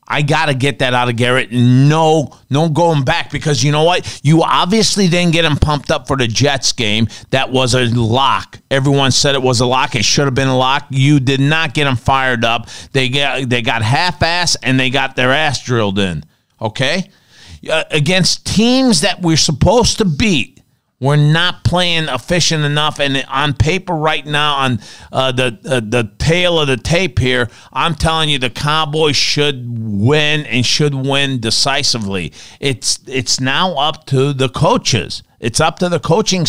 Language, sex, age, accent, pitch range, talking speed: English, male, 40-59, American, 130-170 Hz, 185 wpm